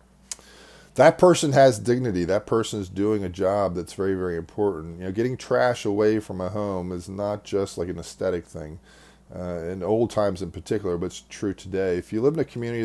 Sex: male